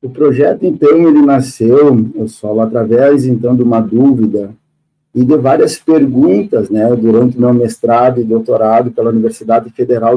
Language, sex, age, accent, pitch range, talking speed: Portuguese, male, 50-69, Brazilian, 115-155 Hz, 150 wpm